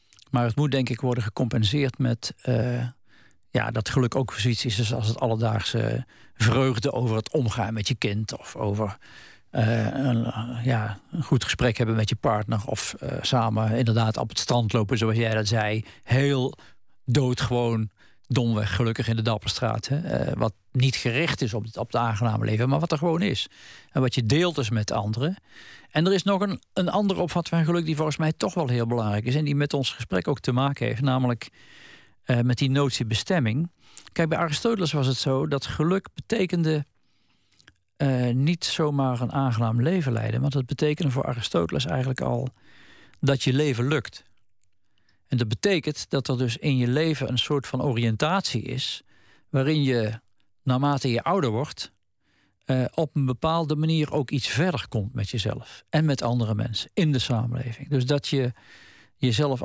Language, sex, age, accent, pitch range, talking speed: Dutch, male, 50-69, Dutch, 115-145 Hz, 185 wpm